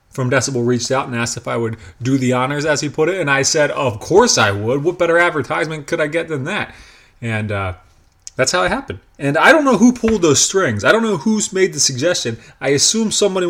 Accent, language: American, English